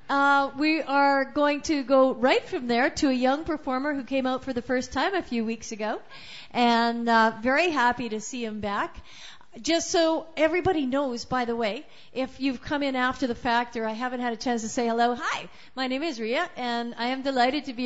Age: 50-69